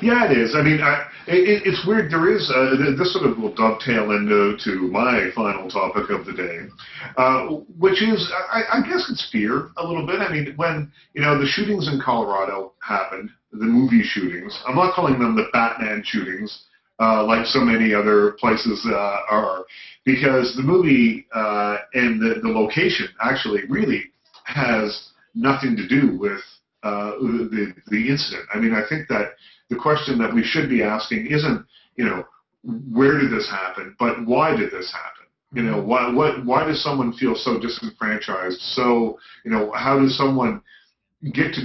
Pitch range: 115-165 Hz